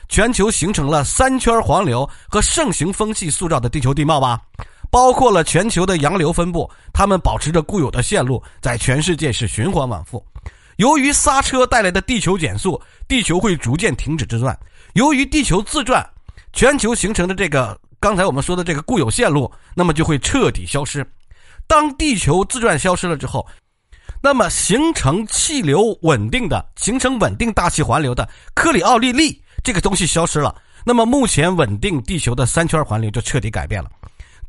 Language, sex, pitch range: Chinese, male, 125-200 Hz